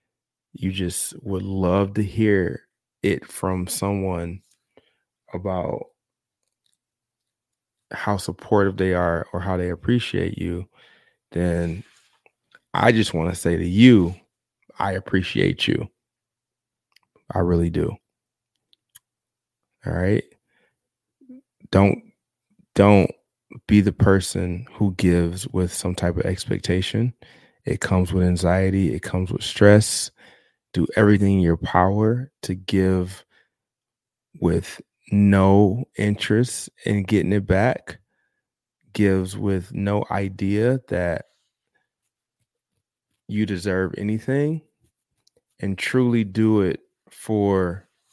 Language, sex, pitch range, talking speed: English, male, 90-105 Hz, 100 wpm